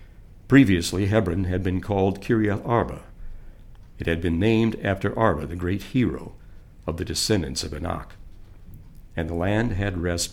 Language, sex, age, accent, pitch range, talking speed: English, male, 60-79, American, 90-110 Hz, 150 wpm